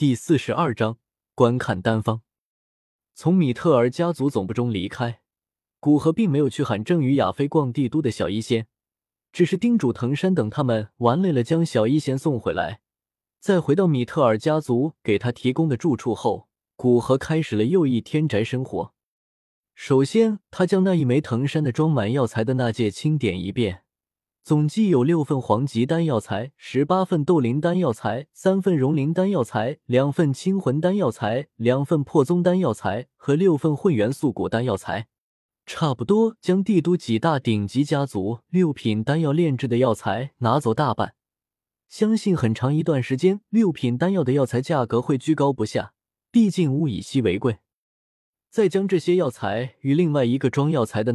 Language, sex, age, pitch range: Chinese, male, 20-39, 115-165 Hz